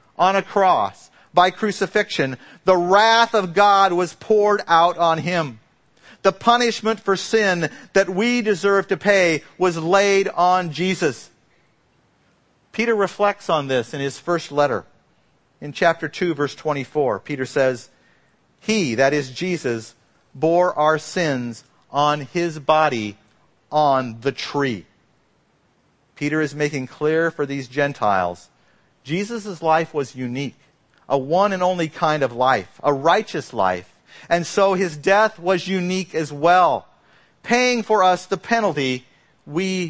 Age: 50-69